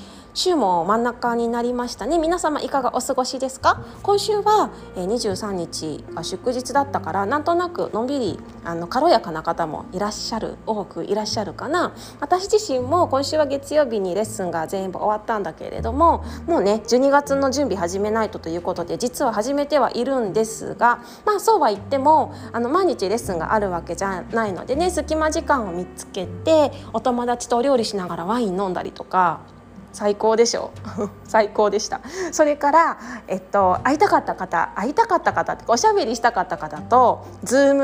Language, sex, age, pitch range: Japanese, female, 20-39, 195-280 Hz